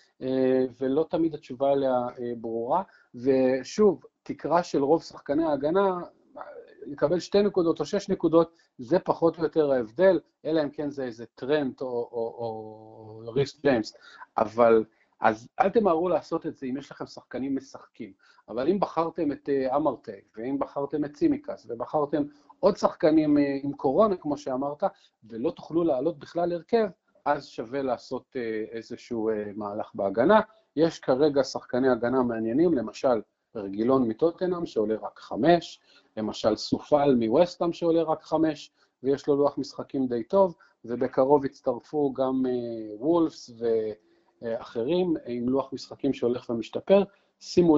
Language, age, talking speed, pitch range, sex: Hebrew, 40-59, 130 wpm, 125-170 Hz, male